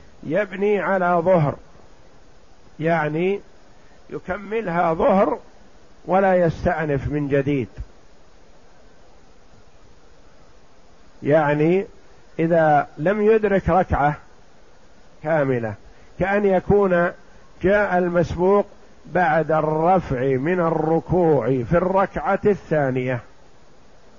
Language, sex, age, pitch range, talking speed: Arabic, male, 50-69, 155-190 Hz, 65 wpm